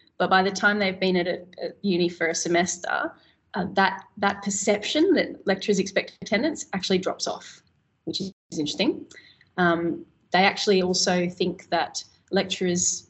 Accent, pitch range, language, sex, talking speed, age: Australian, 175-200 Hz, English, female, 150 wpm, 20-39